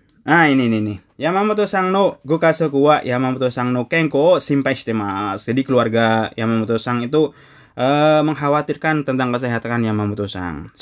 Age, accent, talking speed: 20-39, native, 140 wpm